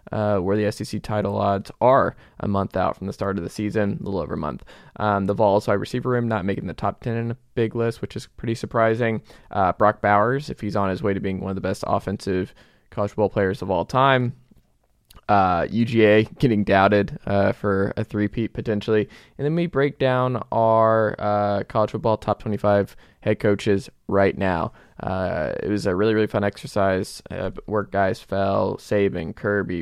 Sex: male